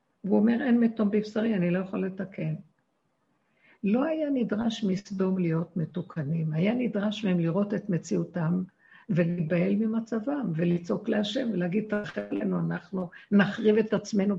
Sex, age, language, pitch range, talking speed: female, 60-79, Hebrew, 180-220 Hz, 125 wpm